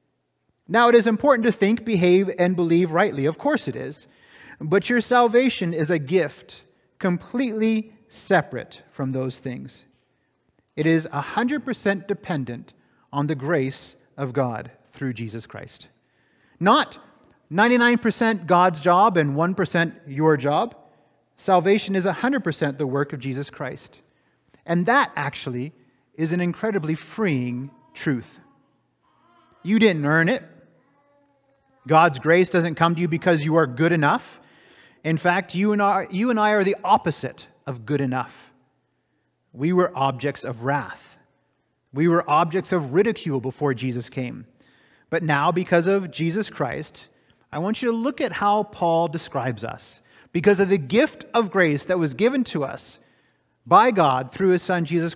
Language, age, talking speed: English, 30-49, 150 wpm